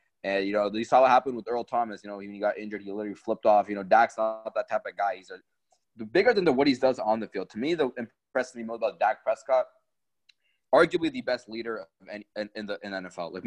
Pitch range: 105-130 Hz